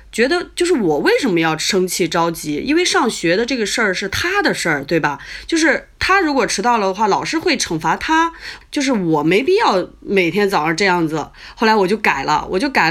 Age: 20-39